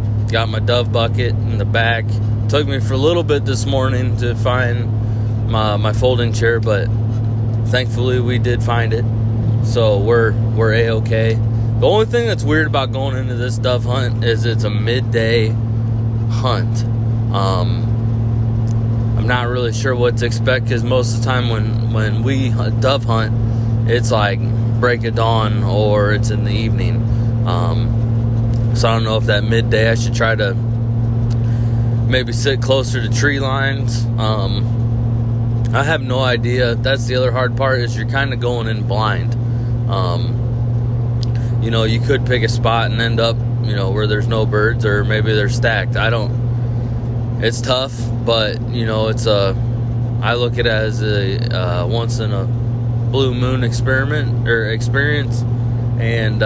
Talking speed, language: 165 wpm, English